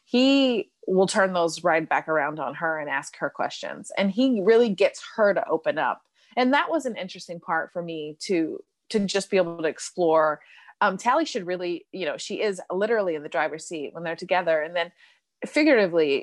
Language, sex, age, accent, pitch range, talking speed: English, female, 30-49, American, 165-225 Hz, 205 wpm